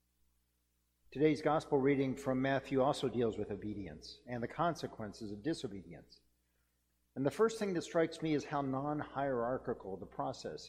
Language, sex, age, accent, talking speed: English, male, 50-69, American, 145 wpm